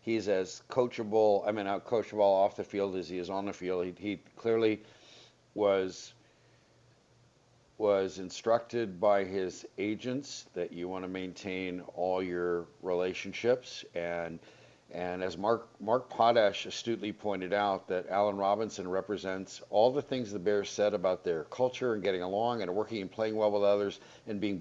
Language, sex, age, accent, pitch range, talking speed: English, male, 50-69, American, 95-120 Hz, 165 wpm